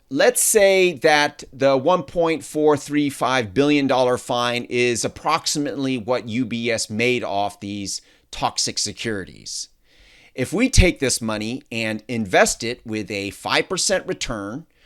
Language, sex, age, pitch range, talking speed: English, male, 30-49, 120-170 Hz, 115 wpm